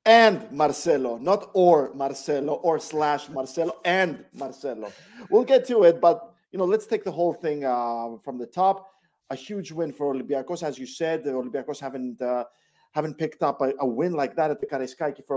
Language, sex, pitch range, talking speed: English, male, 135-180 Hz, 190 wpm